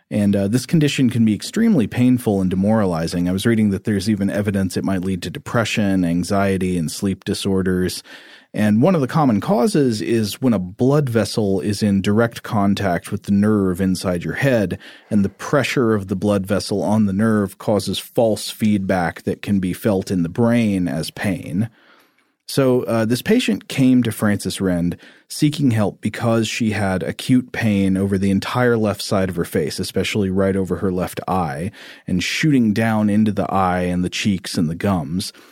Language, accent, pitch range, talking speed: English, American, 95-120 Hz, 185 wpm